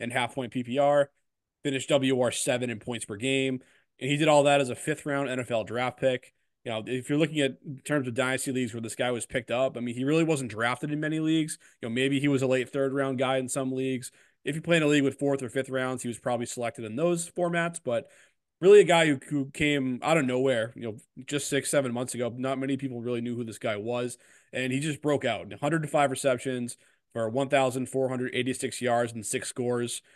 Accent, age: American, 20-39